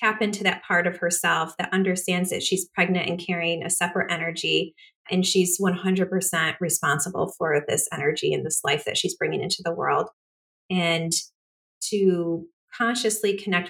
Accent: American